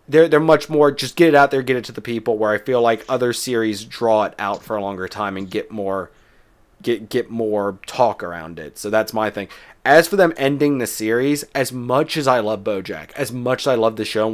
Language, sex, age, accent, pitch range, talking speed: English, male, 30-49, American, 110-150 Hz, 250 wpm